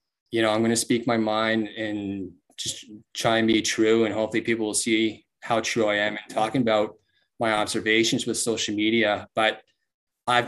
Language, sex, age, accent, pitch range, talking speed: English, male, 20-39, American, 110-120 Hz, 190 wpm